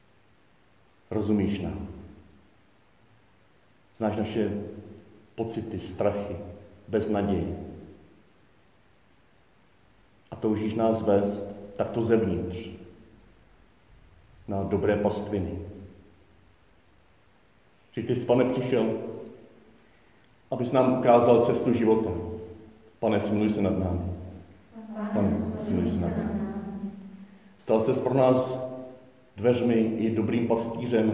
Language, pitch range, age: Czech, 100-115 Hz, 40-59